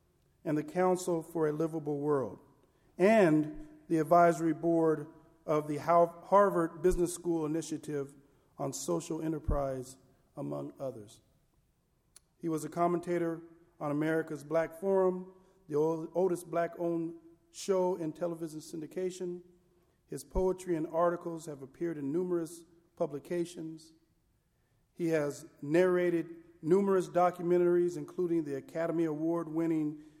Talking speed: 110 wpm